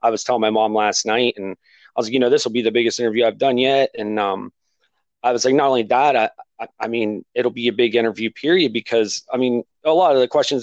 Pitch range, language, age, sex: 105-135 Hz, English, 30-49, male